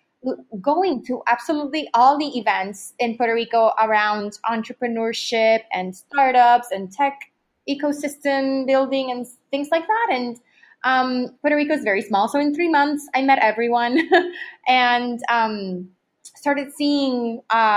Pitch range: 220-285 Hz